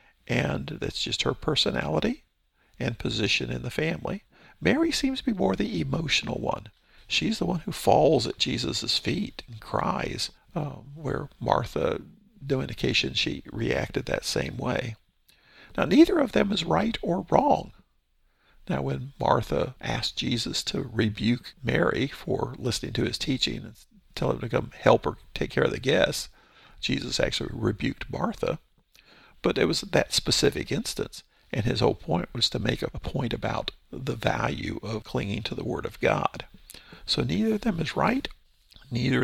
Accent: American